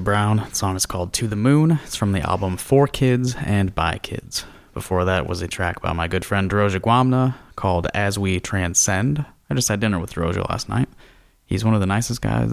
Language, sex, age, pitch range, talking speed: English, male, 20-39, 95-120 Hz, 220 wpm